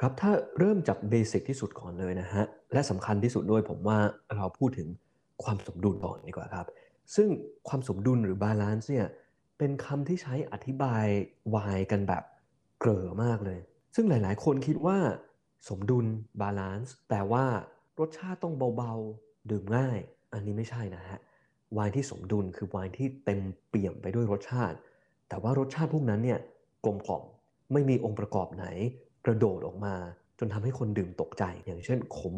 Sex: male